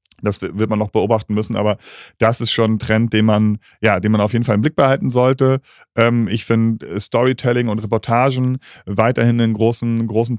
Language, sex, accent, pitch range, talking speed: German, male, German, 105-120 Hz, 195 wpm